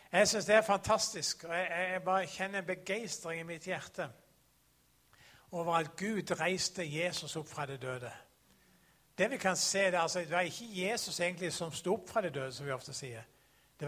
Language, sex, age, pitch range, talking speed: English, male, 60-79, 145-195 Hz, 195 wpm